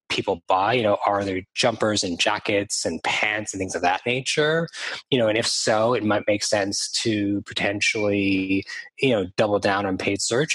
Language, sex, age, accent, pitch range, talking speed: English, male, 20-39, American, 100-125 Hz, 195 wpm